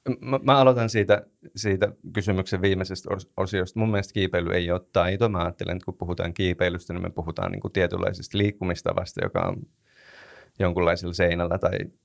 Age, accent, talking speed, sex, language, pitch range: 30-49, native, 155 wpm, male, Finnish, 90-110 Hz